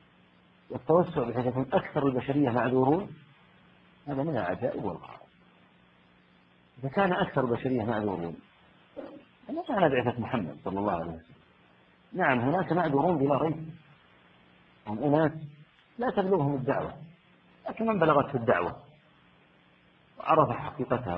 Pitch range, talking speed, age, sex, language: 105-150 Hz, 115 wpm, 50-69, male, Arabic